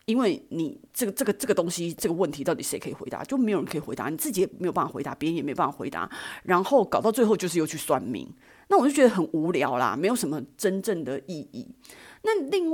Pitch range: 165-255 Hz